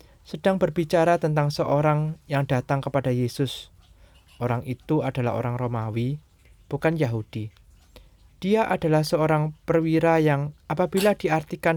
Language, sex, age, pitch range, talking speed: Indonesian, male, 20-39, 120-165 Hz, 110 wpm